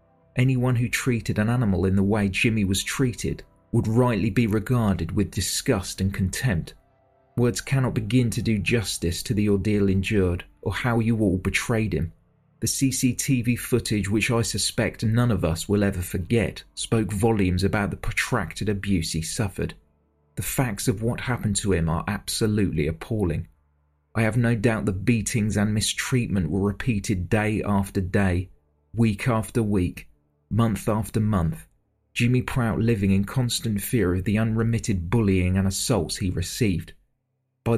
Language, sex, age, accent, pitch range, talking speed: English, male, 30-49, British, 95-120 Hz, 155 wpm